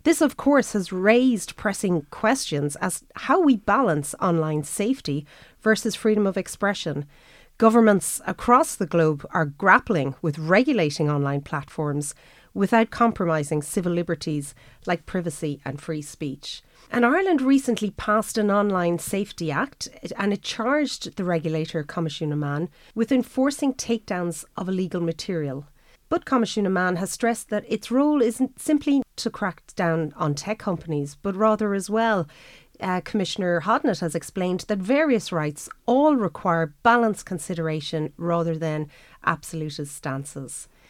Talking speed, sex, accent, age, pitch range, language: 140 wpm, female, Irish, 40-59, 160-225 Hz, English